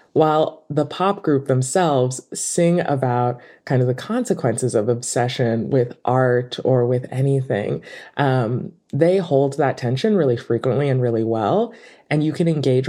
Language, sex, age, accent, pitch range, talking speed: English, female, 20-39, American, 125-170 Hz, 150 wpm